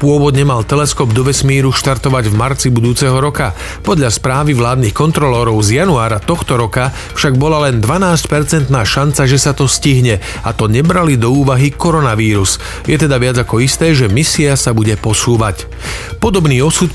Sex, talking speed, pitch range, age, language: male, 160 wpm, 125-150 Hz, 40-59, Slovak